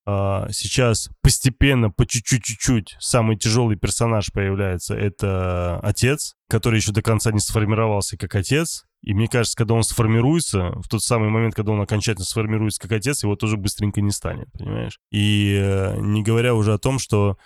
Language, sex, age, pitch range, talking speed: Russian, male, 20-39, 95-115 Hz, 160 wpm